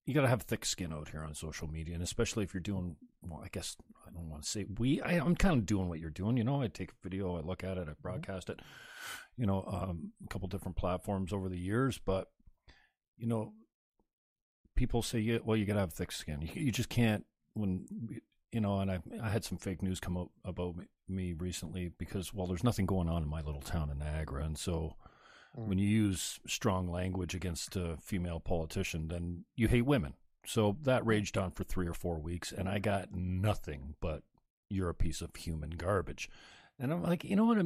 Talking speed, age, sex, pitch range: 230 wpm, 40-59, male, 90-130 Hz